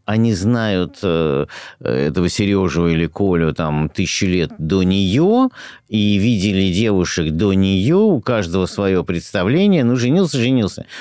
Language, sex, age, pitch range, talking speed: Russian, male, 50-69, 90-125 Hz, 125 wpm